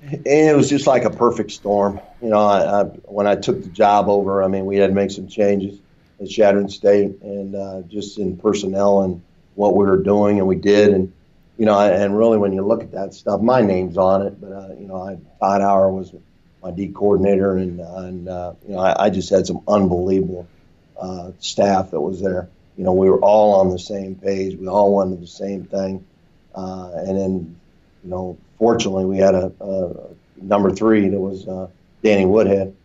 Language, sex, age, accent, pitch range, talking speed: English, male, 50-69, American, 95-100 Hz, 205 wpm